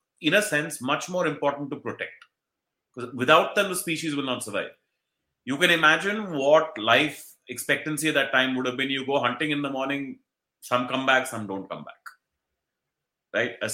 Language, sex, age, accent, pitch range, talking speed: English, male, 30-49, Indian, 130-170 Hz, 190 wpm